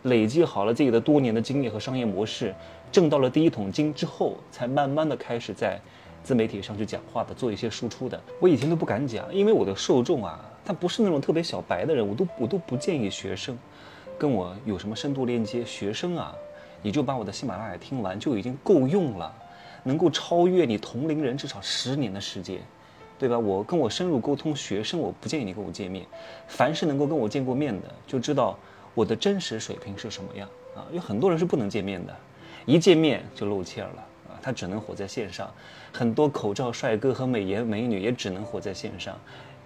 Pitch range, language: 105-155 Hz, Chinese